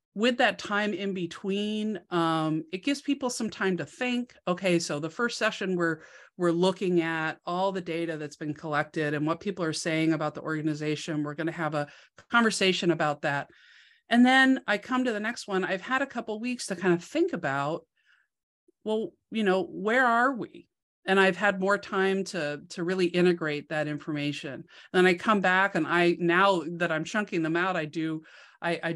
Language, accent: English, American